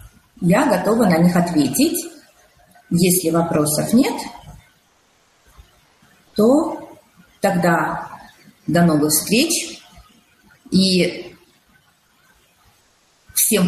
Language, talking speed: Russian, 65 wpm